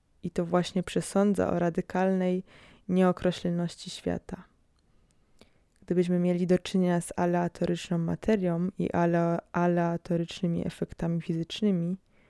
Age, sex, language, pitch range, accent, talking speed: 20-39, female, Polish, 175-195 Hz, native, 95 wpm